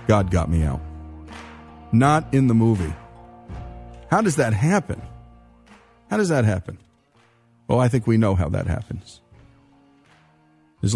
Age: 50-69